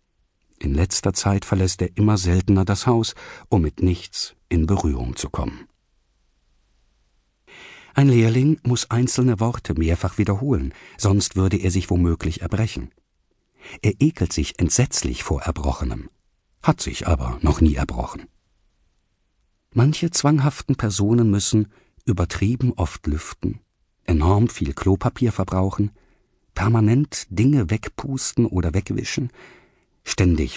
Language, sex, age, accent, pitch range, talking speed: German, male, 50-69, German, 85-115 Hz, 115 wpm